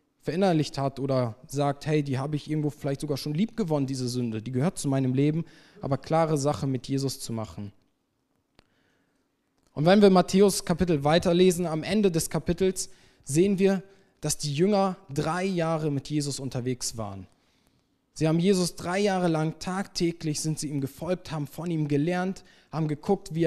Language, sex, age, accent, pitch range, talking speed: German, male, 20-39, German, 145-185 Hz, 170 wpm